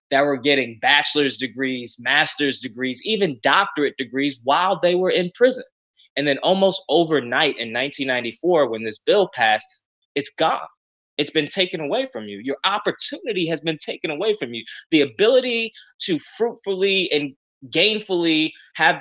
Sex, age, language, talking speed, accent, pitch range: male, 20-39, English, 150 wpm, American, 115-150 Hz